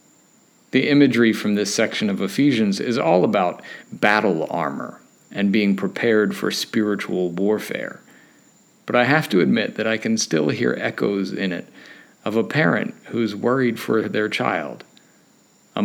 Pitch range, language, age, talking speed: 95-120 Hz, English, 50-69, 150 wpm